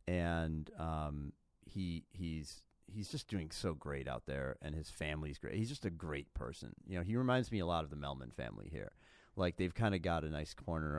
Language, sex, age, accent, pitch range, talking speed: English, male, 40-59, American, 75-95 Hz, 220 wpm